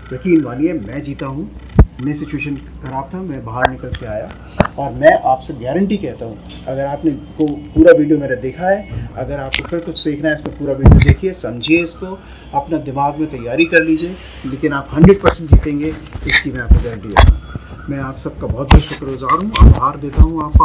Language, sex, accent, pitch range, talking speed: Hindi, male, native, 130-155 Hz, 195 wpm